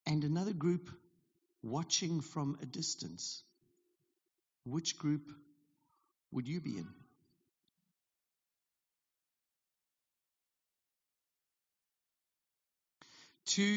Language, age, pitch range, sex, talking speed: English, 50-69, 145-180 Hz, male, 60 wpm